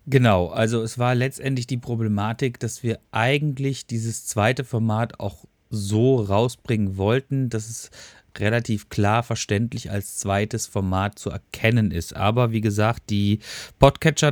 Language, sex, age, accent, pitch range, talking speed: German, male, 30-49, German, 105-125 Hz, 140 wpm